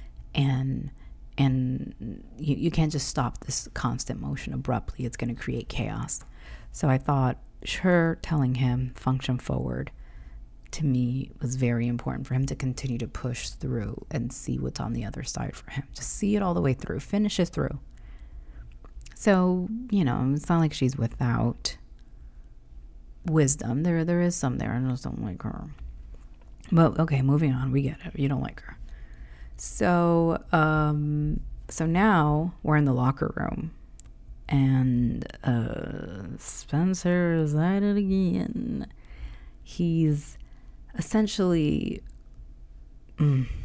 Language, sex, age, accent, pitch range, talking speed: English, female, 30-49, American, 115-155 Hz, 140 wpm